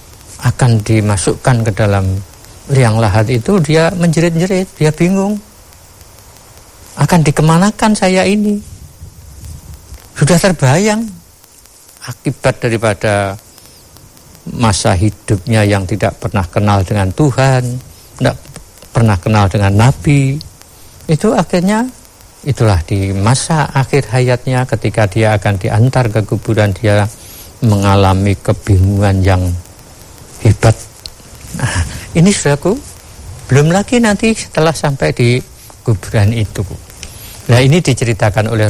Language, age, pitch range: Indonesian, 50-69, 100-135 Hz